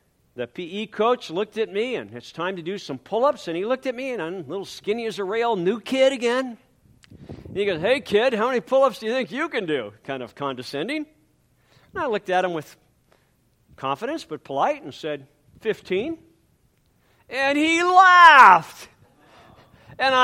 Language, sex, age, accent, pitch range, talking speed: English, male, 50-69, American, 180-285 Hz, 190 wpm